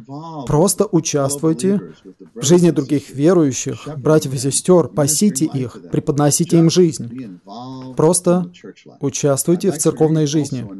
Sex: male